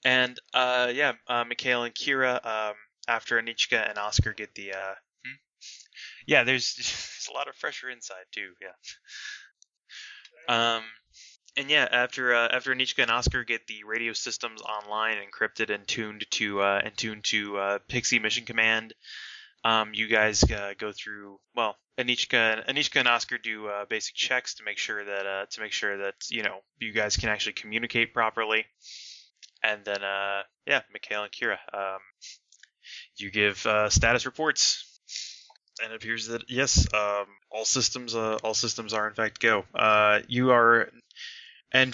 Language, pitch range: English, 105-120 Hz